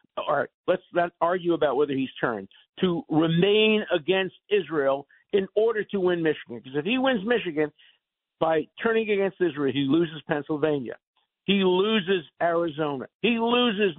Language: English